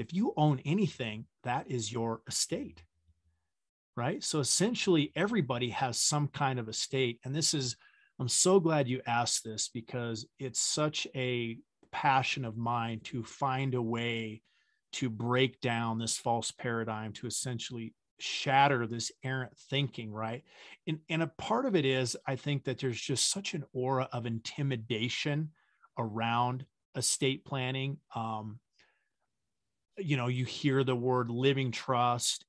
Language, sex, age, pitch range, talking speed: English, male, 40-59, 115-135 Hz, 145 wpm